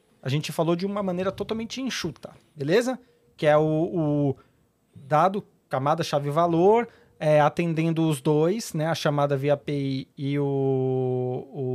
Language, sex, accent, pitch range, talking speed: Portuguese, male, Brazilian, 145-190 Hz, 145 wpm